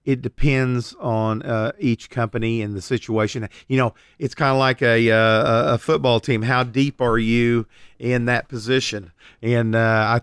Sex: male